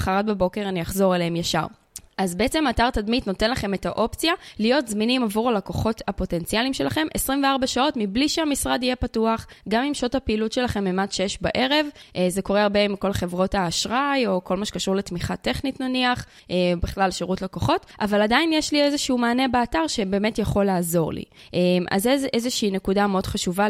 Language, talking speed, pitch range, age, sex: Hebrew, 175 wpm, 185-240 Hz, 20-39, female